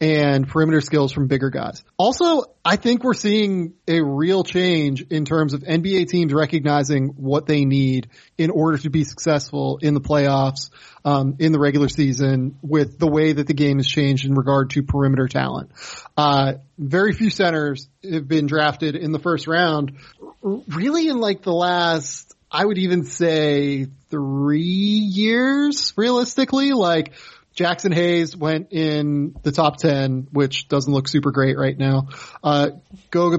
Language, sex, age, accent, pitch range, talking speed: English, male, 30-49, American, 145-180 Hz, 160 wpm